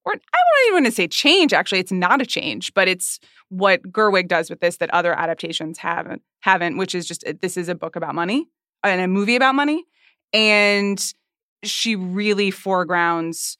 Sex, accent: female, American